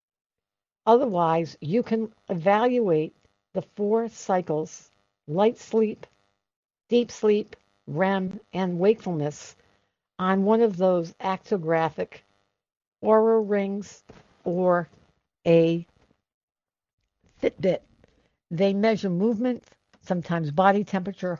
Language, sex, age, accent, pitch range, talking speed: English, female, 60-79, American, 165-210 Hz, 85 wpm